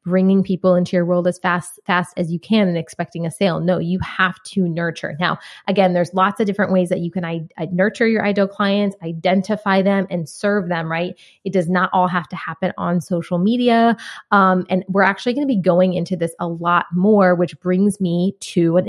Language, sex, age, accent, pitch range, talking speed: English, female, 20-39, American, 175-195 Hz, 220 wpm